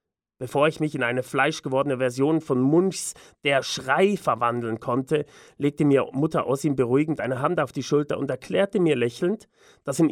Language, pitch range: German, 135-185 Hz